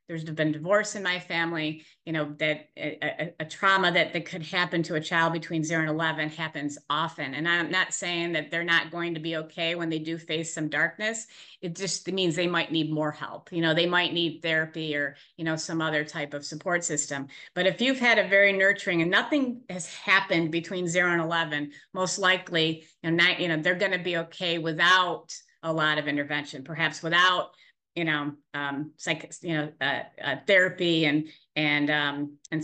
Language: English